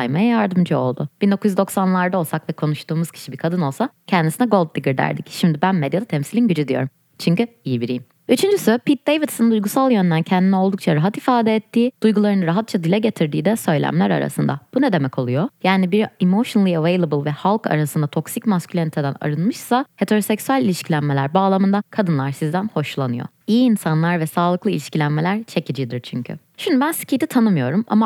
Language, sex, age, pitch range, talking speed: Turkish, female, 20-39, 155-210 Hz, 155 wpm